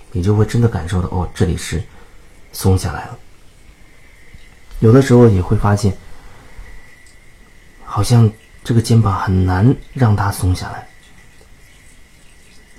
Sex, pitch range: male, 90-115 Hz